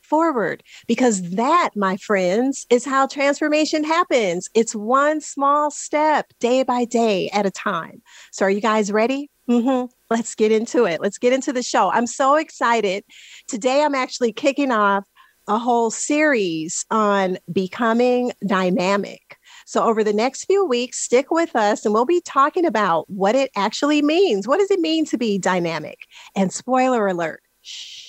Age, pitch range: 40-59, 200-280 Hz